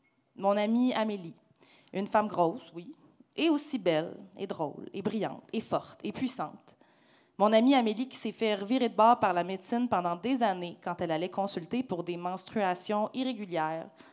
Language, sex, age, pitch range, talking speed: French, female, 30-49, 175-230 Hz, 175 wpm